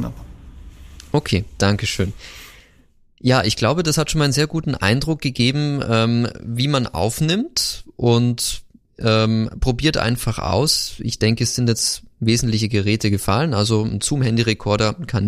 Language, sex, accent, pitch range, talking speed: German, male, German, 100-125 Hz, 140 wpm